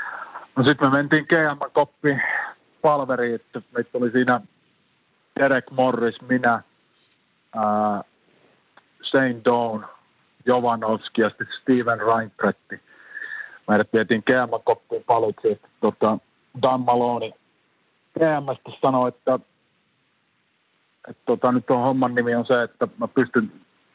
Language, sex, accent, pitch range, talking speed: Finnish, male, native, 110-130 Hz, 105 wpm